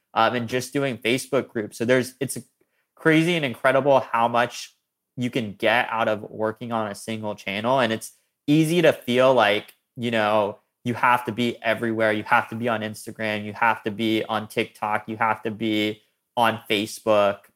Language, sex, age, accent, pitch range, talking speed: English, male, 20-39, American, 110-130 Hz, 190 wpm